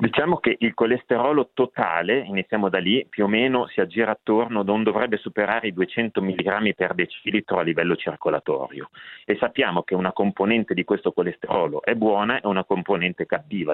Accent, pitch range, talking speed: native, 100-125 Hz, 170 wpm